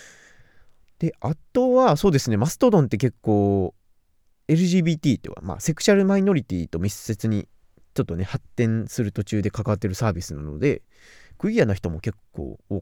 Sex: male